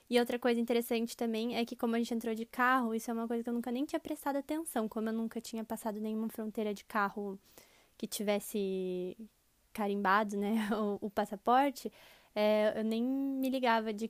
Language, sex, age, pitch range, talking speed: Portuguese, female, 10-29, 220-245 Hz, 195 wpm